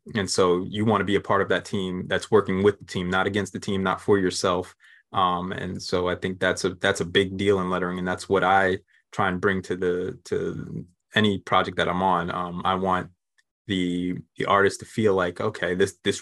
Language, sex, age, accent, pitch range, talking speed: English, male, 20-39, American, 90-100 Hz, 235 wpm